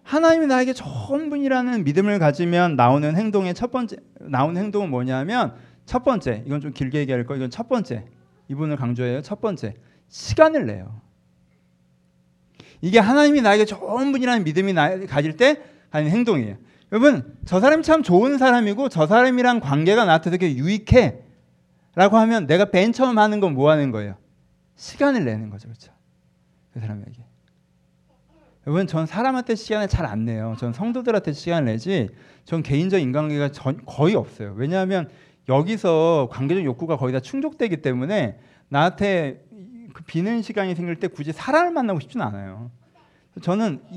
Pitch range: 130-220 Hz